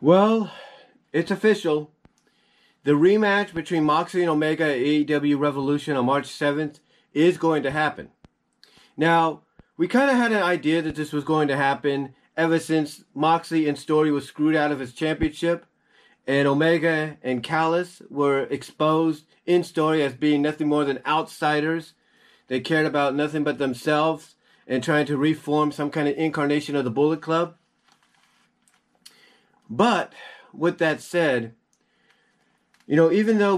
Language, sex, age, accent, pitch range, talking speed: English, male, 30-49, American, 140-165 Hz, 150 wpm